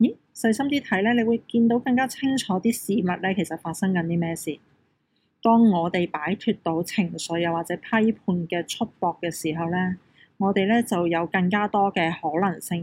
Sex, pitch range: female, 170-205 Hz